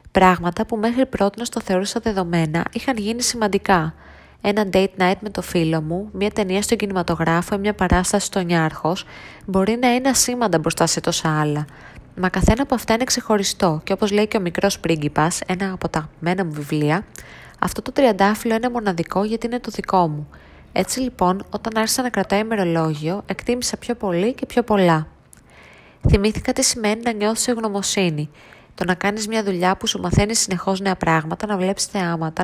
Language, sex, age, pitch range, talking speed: Greek, female, 20-39, 175-220 Hz, 175 wpm